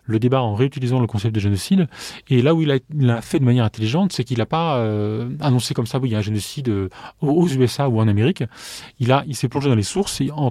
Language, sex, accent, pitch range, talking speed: French, male, French, 115-145 Hz, 265 wpm